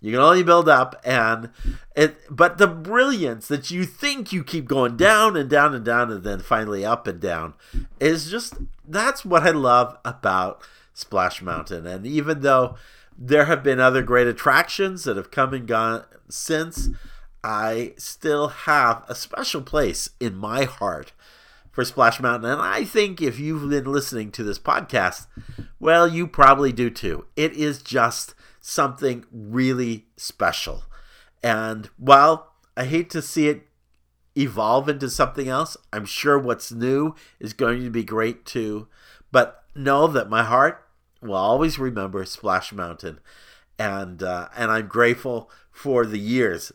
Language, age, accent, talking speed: English, 50-69, American, 160 wpm